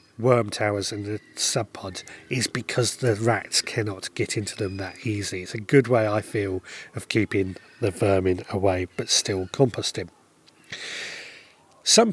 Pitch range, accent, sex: 105-140 Hz, British, male